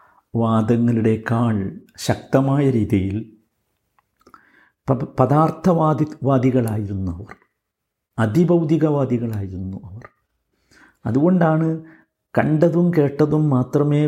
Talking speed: 55 wpm